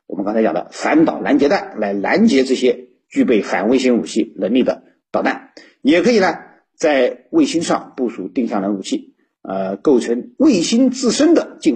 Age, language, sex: 50-69, Chinese, male